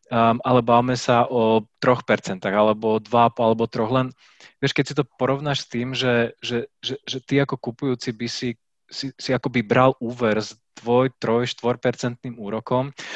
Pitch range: 115-130 Hz